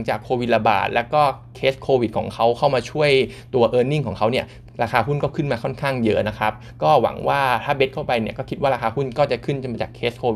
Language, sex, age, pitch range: Thai, male, 20-39, 115-140 Hz